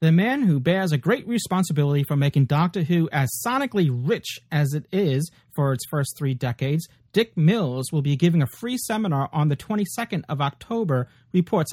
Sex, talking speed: male, 185 wpm